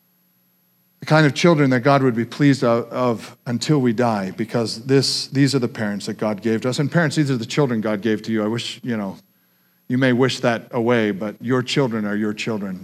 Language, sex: English, male